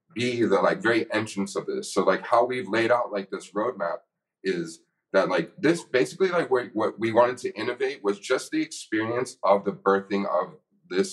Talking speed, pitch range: 195 wpm, 100-115 Hz